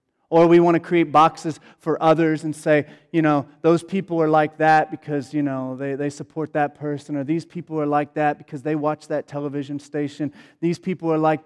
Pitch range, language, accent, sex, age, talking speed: 150-165 Hz, English, American, male, 30-49, 215 wpm